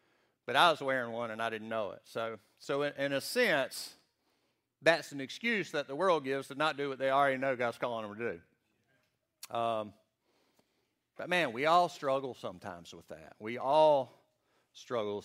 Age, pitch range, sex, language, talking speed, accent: 50-69, 115-145 Hz, male, English, 185 wpm, American